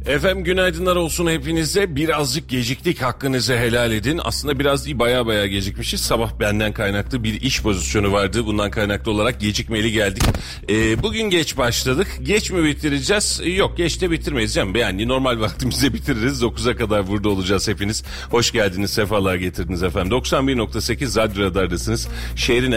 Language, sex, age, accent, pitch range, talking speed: Turkish, male, 40-59, native, 100-135 Hz, 150 wpm